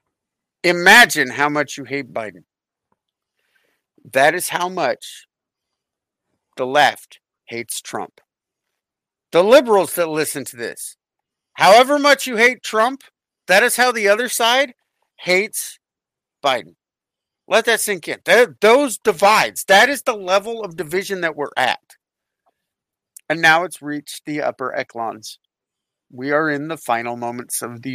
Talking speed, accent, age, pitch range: 135 wpm, American, 50-69, 140-185 Hz